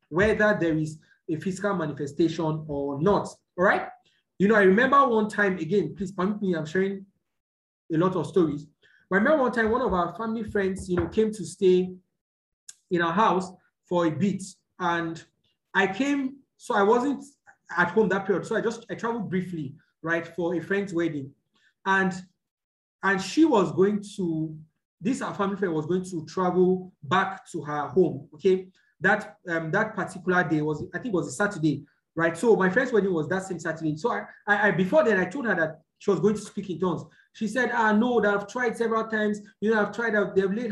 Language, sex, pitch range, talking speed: English, male, 165-210 Hz, 210 wpm